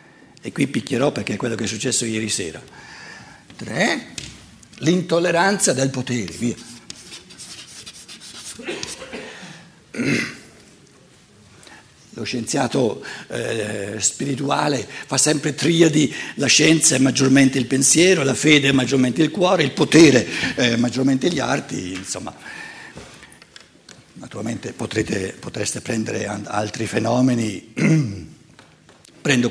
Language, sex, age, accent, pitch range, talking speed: Italian, male, 60-79, native, 120-170 Hz, 95 wpm